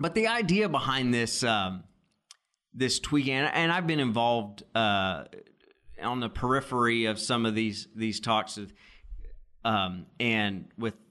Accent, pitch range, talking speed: American, 100-125 Hz, 140 wpm